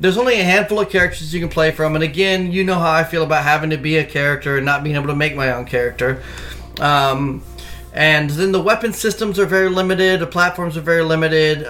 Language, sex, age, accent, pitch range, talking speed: English, male, 30-49, American, 150-190 Hz, 235 wpm